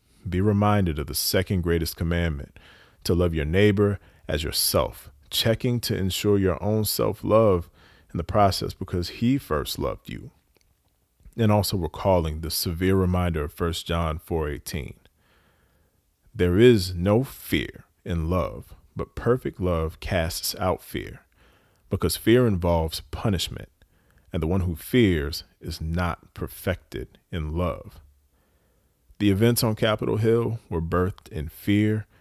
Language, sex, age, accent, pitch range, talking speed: English, male, 40-59, American, 80-100 Hz, 135 wpm